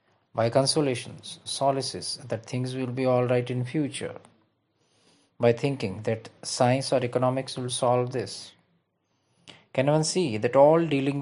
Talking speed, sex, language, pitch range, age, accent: 140 wpm, male, English, 120-145 Hz, 50-69, Indian